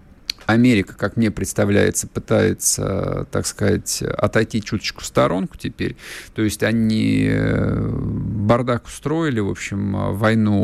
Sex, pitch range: male, 100-120 Hz